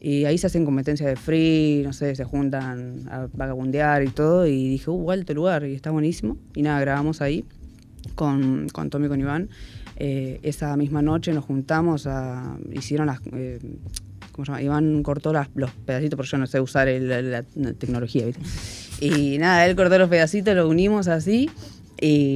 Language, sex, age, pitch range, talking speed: Spanish, female, 20-39, 125-150 Hz, 190 wpm